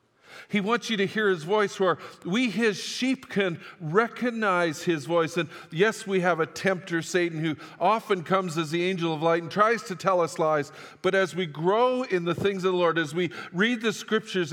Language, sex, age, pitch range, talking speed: English, male, 50-69, 135-180 Hz, 210 wpm